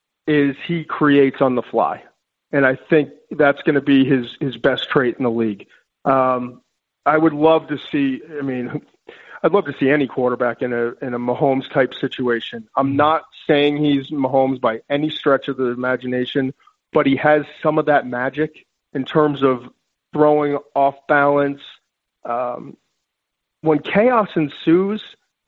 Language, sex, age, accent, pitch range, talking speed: English, male, 40-59, American, 135-155 Hz, 160 wpm